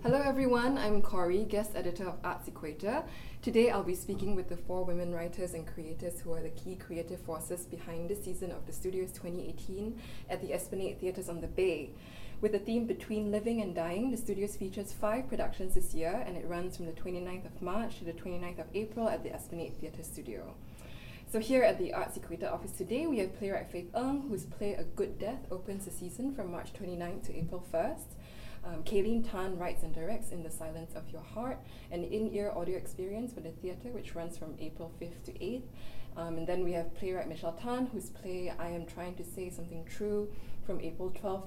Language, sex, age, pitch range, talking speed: English, female, 20-39, 165-200 Hz, 210 wpm